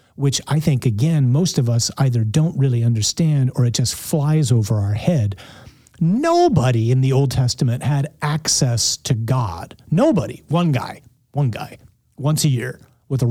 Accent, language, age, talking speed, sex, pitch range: American, English, 40-59, 165 wpm, male, 120-150 Hz